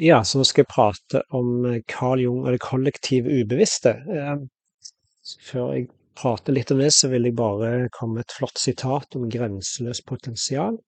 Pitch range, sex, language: 120-145 Hz, male, English